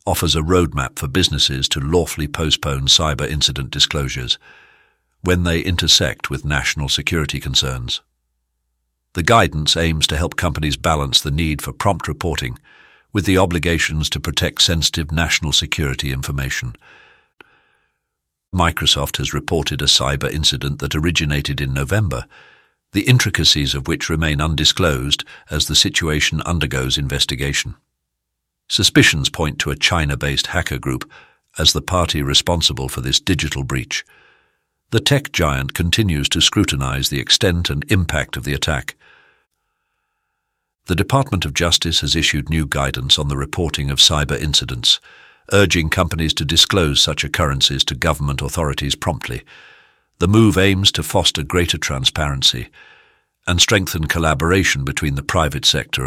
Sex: male